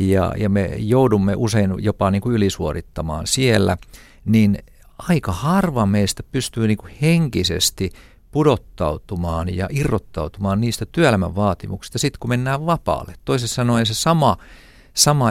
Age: 50-69